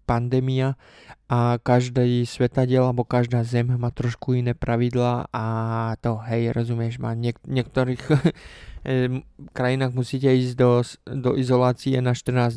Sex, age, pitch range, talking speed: male, 20-39, 120-130 Hz, 125 wpm